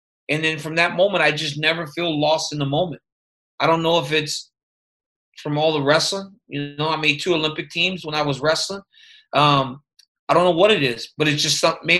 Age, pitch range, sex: 30-49, 150-185 Hz, male